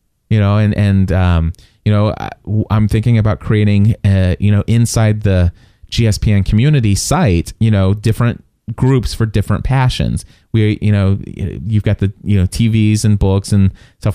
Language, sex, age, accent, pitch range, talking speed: English, male, 30-49, American, 95-115 Hz, 170 wpm